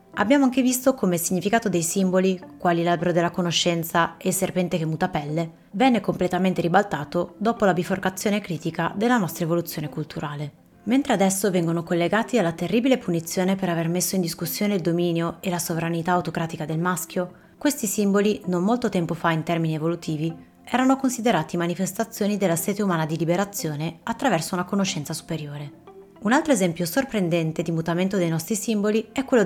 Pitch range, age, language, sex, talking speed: 170-210 Hz, 30-49, Italian, female, 165 wpm